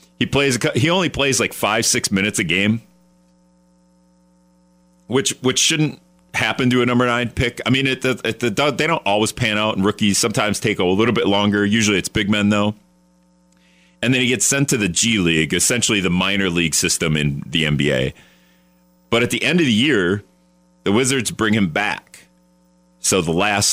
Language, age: English, 40-59